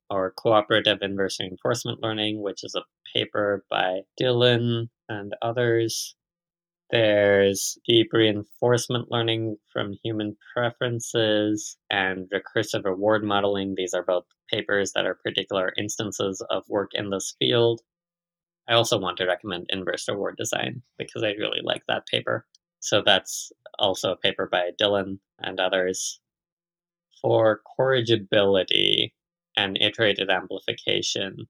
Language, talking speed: English, 125 wpm